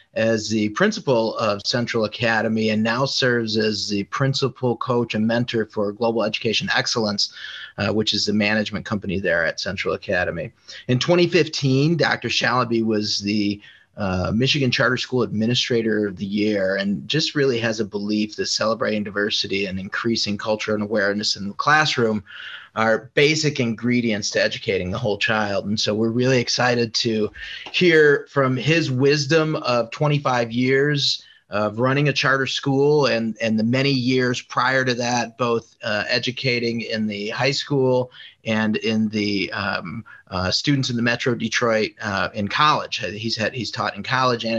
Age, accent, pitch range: 30-49, American, 105-130 Hz